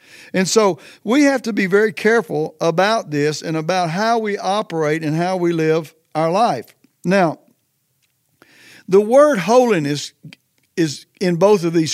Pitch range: 155-210 Hz